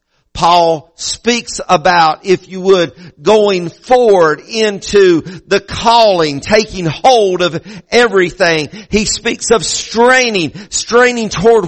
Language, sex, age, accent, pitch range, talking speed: English, male, 50-69, American, 180-230 Hz, 110 wpm